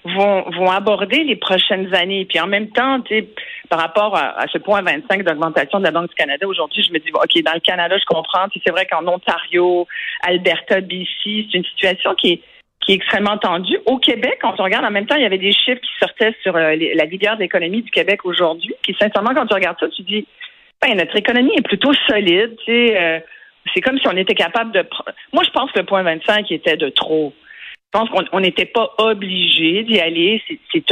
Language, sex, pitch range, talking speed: French, female, 180-240 Hz, 225 wpm